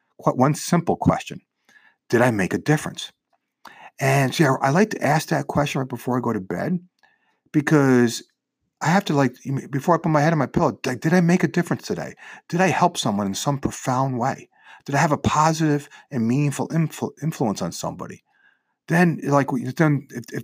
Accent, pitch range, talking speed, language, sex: American, 120-165 Hz, 200 wpm, English, male